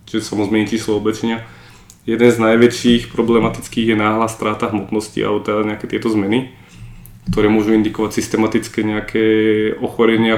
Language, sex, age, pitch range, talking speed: Slovak, male, 20-39, 105-115 Hz, 145 wpm